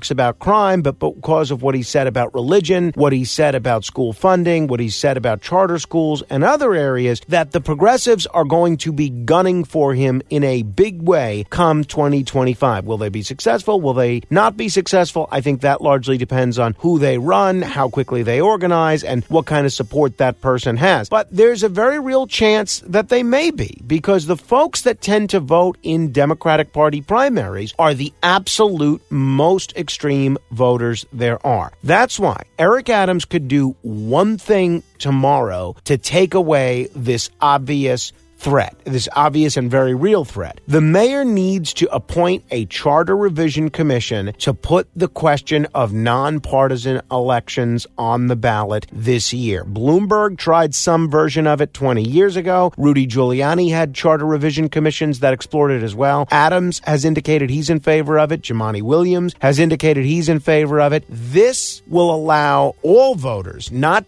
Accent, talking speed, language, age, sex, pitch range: American, 175 wpm, English, 50-69, male, 130-170 Hz